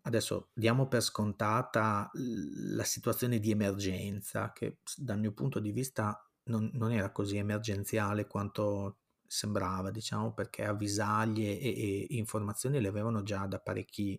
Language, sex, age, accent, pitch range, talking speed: Italian, male, 30-49, native, 100-115 Hz, 135 wpm